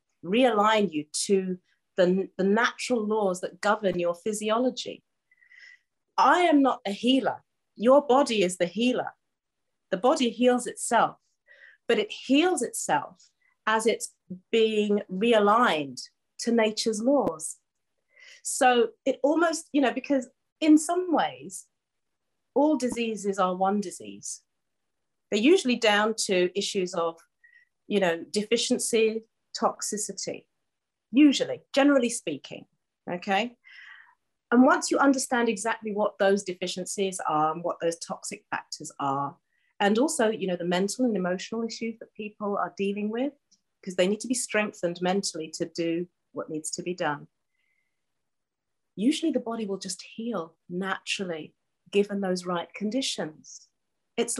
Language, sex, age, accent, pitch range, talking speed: English, female, 40-59, British, 185-255 Hz, 130 wpm